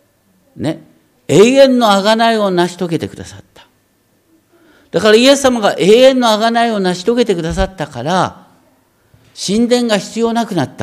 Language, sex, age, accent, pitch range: Japanese, male, 60-79, native, 165-255 Hz